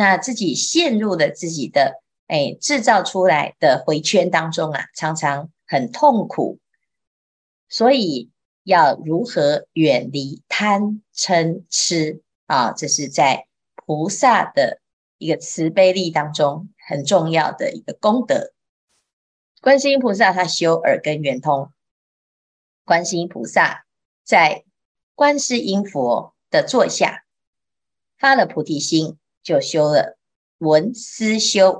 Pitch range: 155-230 Hz